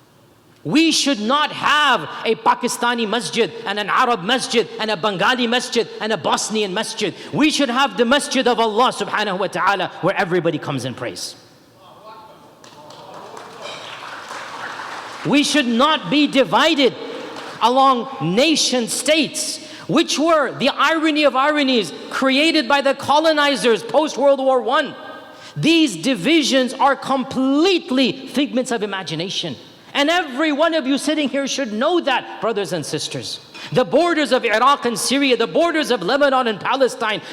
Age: 40-59